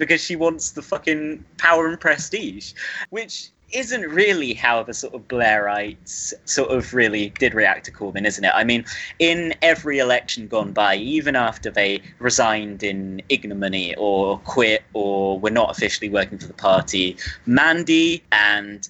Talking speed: 160 wpm